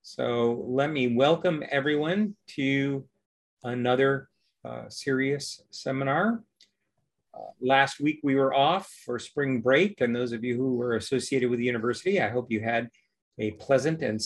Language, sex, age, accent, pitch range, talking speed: English, male, 40-59, American, 125-165 Hz, 150 wpm